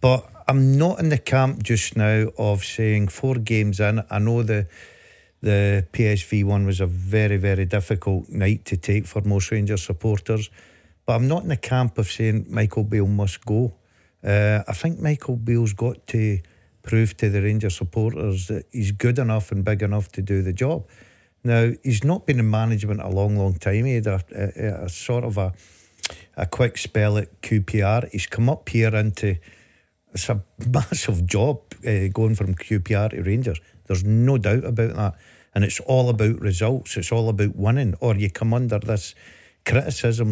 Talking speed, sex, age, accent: 185 wpm, male, 50-69, British